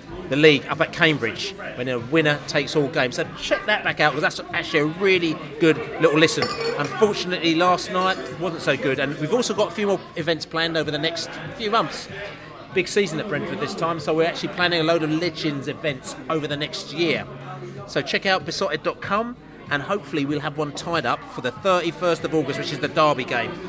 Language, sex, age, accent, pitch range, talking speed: English, male, 30-49, British, 150-190 Hz, 215 wpm